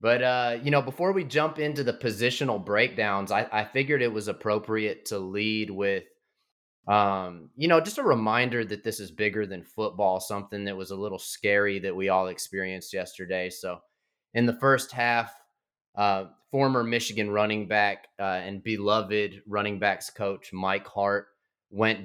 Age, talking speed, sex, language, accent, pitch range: 20-39, 170 wpm, male, English, American, 100-115 Hz